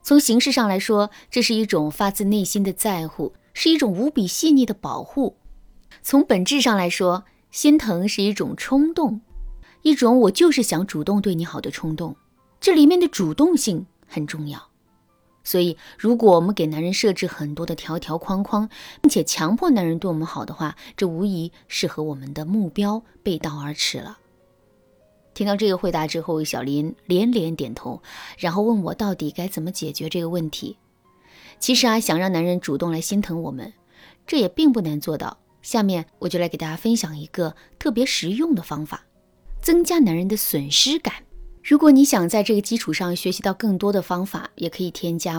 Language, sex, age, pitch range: Chinese, female, 20-39, 165-230 Hz